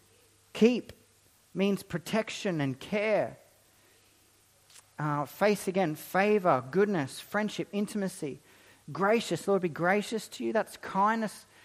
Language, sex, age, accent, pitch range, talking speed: English, male, 40-59, Australian, 125-205 Hz, 105 wpm